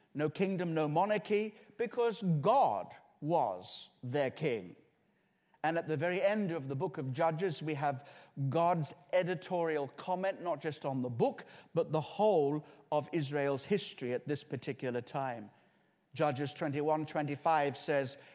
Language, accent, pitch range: English, British, 145-195 Hz